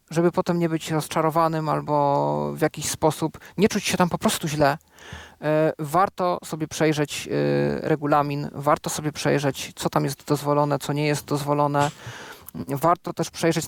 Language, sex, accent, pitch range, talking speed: Polish, male, native, 145-175 Hz, 150 wpm